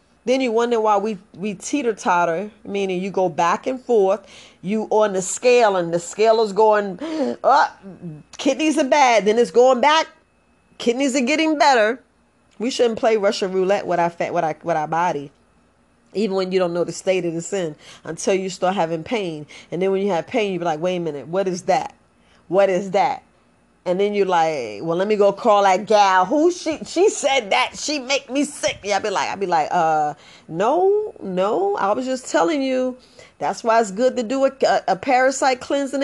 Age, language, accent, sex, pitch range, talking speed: 30-49, English, American, female, 185-255 Hz, 215 wpm